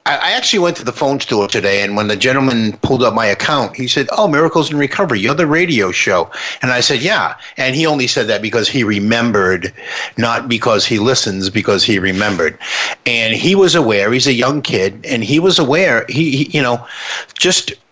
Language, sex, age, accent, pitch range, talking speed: English, male, 50-69, American, 115-145 Hz, 210 wpm